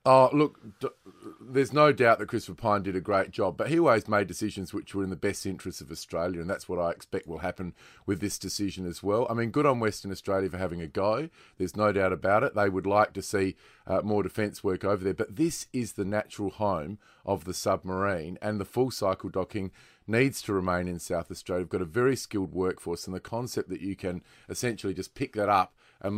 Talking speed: 230 wpm